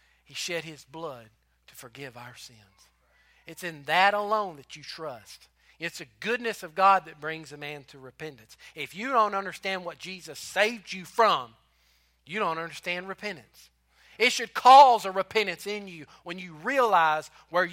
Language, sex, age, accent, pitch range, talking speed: English, male, 40-59, American, 155-225 Hz, 170 wpm